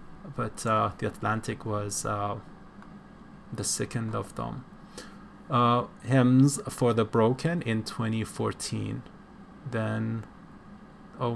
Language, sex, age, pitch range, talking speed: English, male, 20-39, 110-135 Hz, 100 wpm